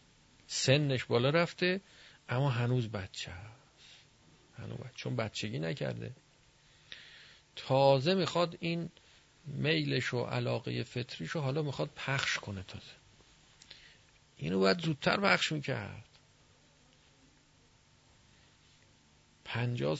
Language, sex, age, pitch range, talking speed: Persian, male, 50-69, 110-135 Hz, 85 wpm